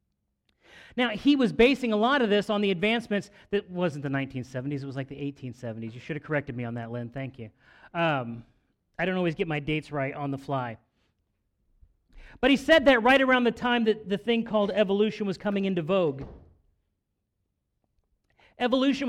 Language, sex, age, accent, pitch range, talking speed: English, male, 40-59, American, 150-225 Hz, 185 wpm